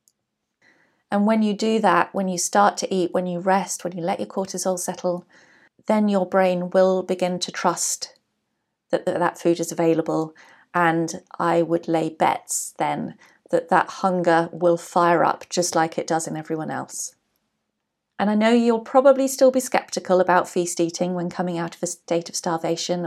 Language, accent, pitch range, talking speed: English, British, 170-195 Hz, 180 wpm